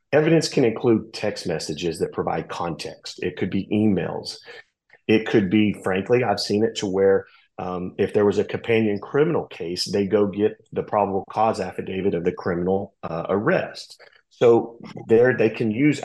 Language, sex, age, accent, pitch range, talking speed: English, male, 40-59, American, 95-115 Hz, 170 wpm